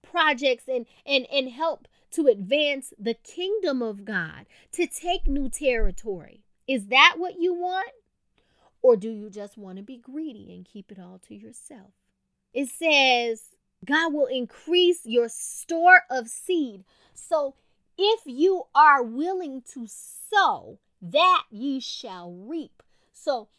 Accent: American